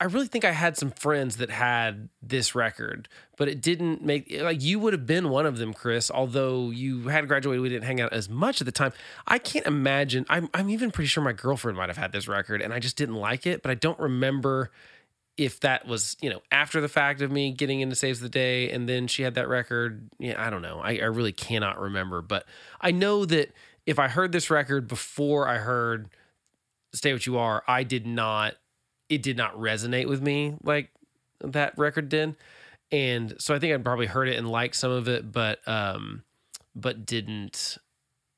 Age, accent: 20-39, American